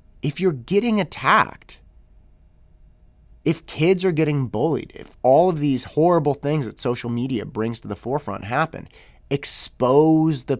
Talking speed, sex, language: 140 wpm, male, English